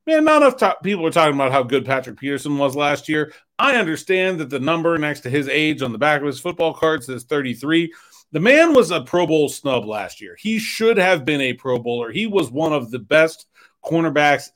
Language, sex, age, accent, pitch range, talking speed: English, male, 40-59, American, 135-180 Hz, 225 wpm